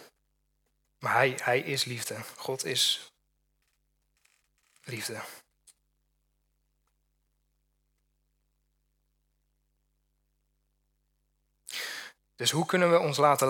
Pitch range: 115-145 Hz